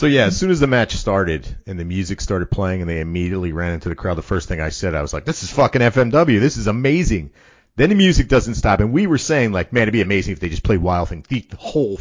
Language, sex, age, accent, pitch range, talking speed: English, male, 40-59, American, 110-185 Hz, 290 wpm